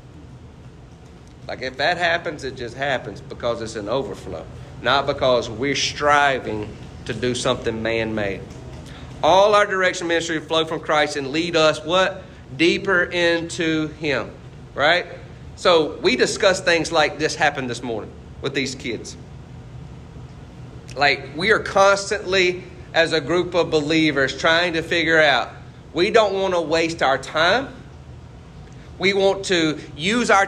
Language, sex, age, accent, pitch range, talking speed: English, male, 40-59, American, 140-175 Hz, 140 wpm